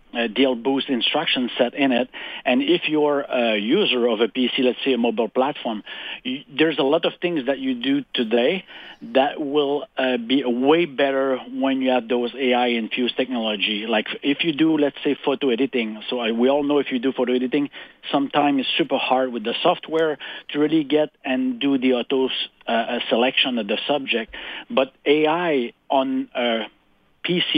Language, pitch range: English, 125-150 Hz